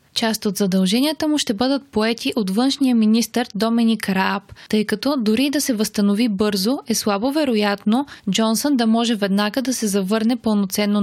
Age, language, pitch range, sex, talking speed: 20-39, Bulgarian, 200-245 Hz, female, 165 wpm